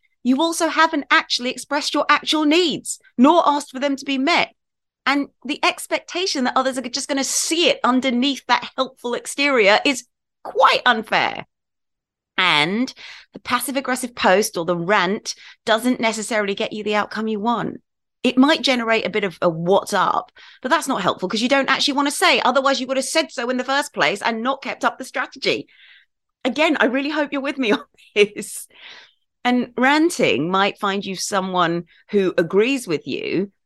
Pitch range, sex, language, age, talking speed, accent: 205-290 Hz, female, English, 30-49, 185 wpm, British